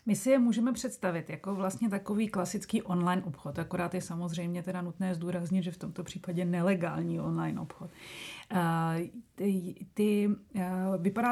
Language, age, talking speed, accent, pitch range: Czech, 30-49, 135 wpm, native, 180-205 Hz